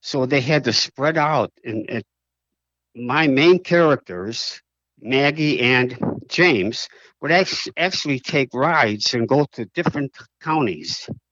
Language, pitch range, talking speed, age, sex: English, 105-140 Hz, 120 wpm, 60-79, male